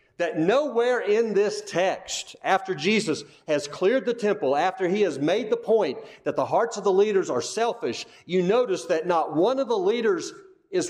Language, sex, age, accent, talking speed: English, male, 50-69, American, 185 wpm